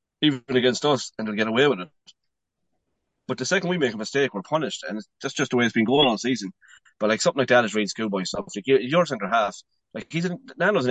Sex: male